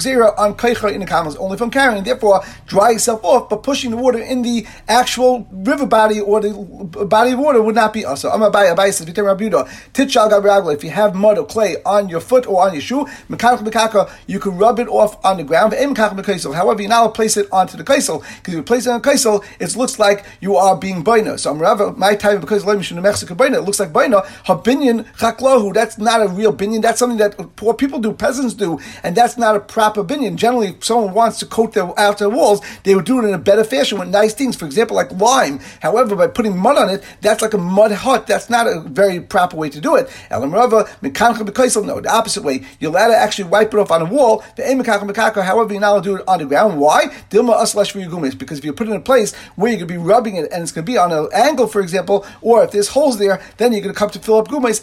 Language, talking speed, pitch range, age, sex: English, 250 wpm, 200-235 Hz, 40-59, male